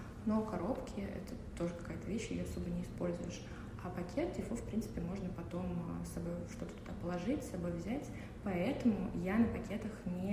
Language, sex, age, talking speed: Russian, female, 20-39, 175 wpm